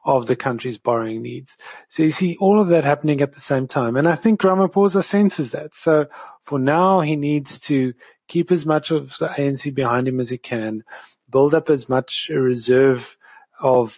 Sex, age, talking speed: male, 40-59, 195 wpm